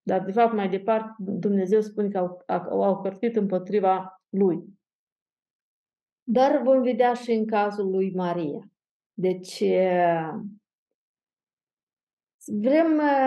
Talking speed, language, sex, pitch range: 105 wpm, Romanian, female, 190-240 Hz